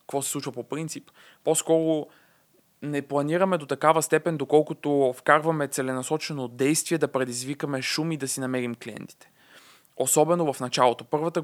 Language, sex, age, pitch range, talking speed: Bulgarian, male, 20-39, 130-155 Hz, 140 wpm